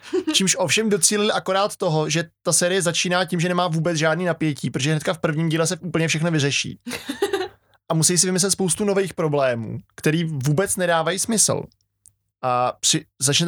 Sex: male